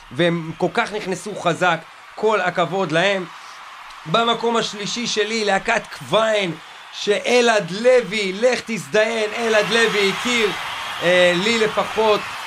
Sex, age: male, 30-49